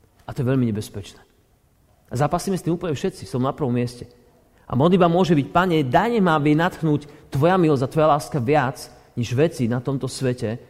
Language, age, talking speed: Slovak, 40-59, 195 wpm